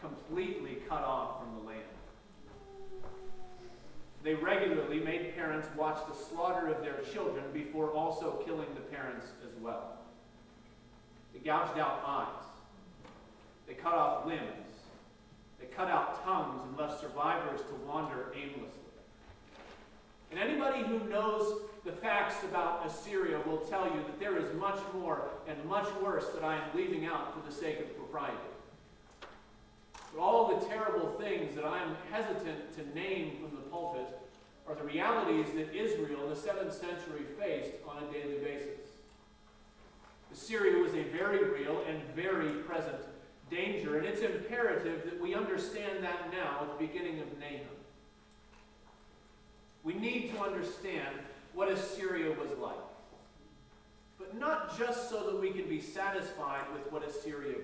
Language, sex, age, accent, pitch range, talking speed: English, male, 40-59, American, 150-215 Hz, 145 wpm